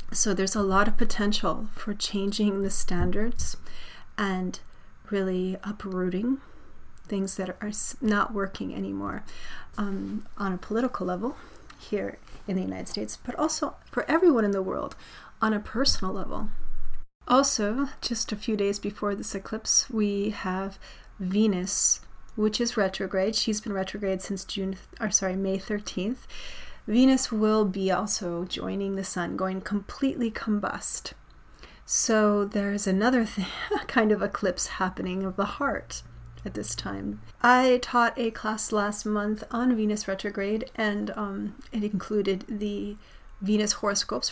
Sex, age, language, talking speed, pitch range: female, 30-49, English, 140 wpm, 190-220 Hz